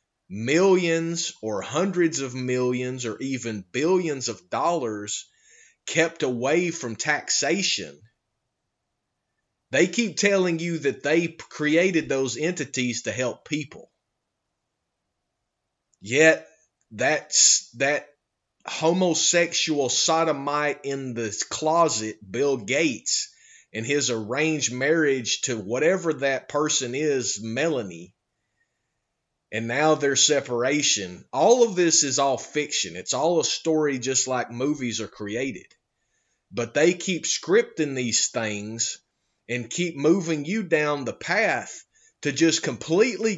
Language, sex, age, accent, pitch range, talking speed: English, male, 30-49, American, 120-165 Hz, 110 wpm